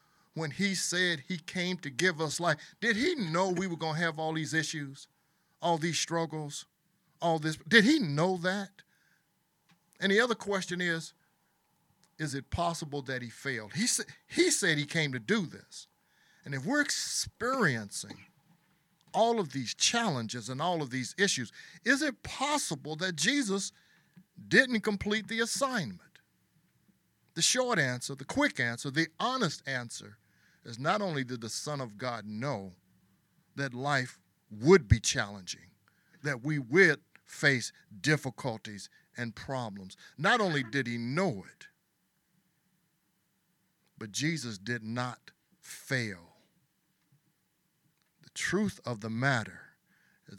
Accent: American